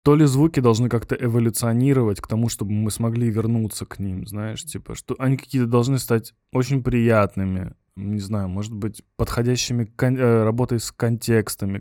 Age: 20-39